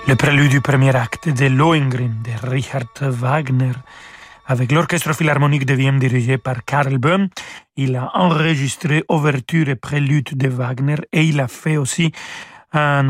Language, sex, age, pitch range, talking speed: French, male, 40-59, 135-165 Hz, 150 wpm